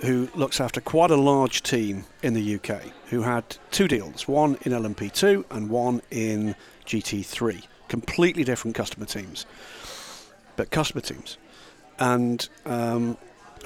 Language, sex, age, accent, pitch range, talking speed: English, male, 40-59, British, 110-135 Hz, 140 wpm